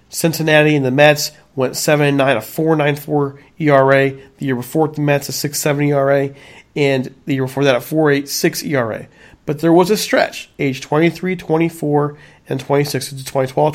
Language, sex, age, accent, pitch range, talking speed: English, male, 40-59, American, 125-150 Hz, 190 wpm